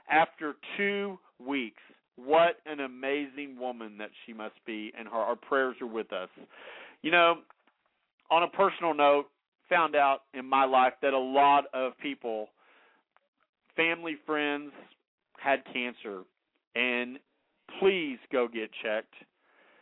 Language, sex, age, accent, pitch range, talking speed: English, male, 40-59, American, 125-150 Hz, 130 wpm